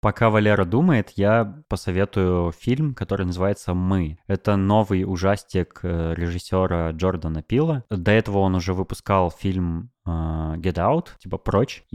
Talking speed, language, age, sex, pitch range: 130 wpm, Russian, 20-39, male, 90-115 Hz